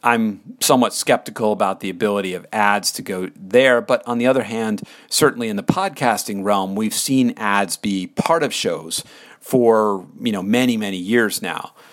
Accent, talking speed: American, 175 wpm